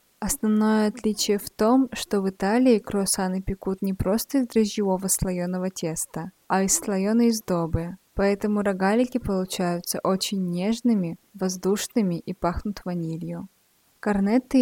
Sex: female